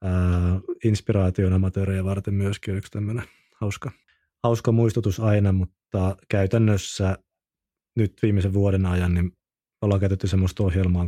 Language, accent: Finnish, native